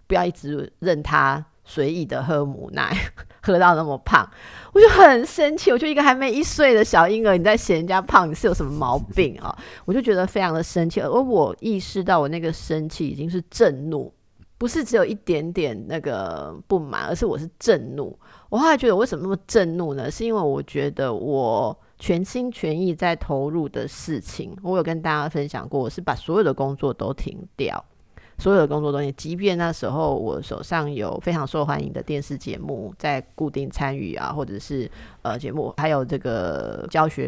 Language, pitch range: Chinese, 145-195 Hz